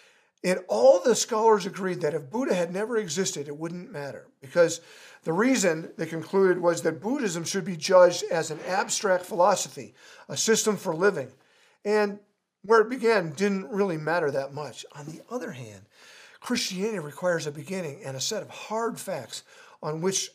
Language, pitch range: English, 165-215 Hz